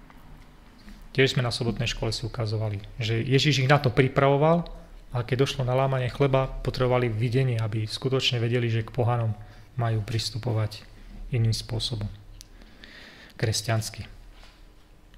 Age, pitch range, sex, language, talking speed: 30-49, 110-140 Hz, male, Slovak, 125 wpm